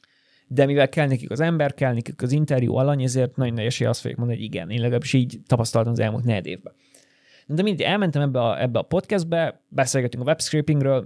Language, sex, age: Hungarian, male, 30-49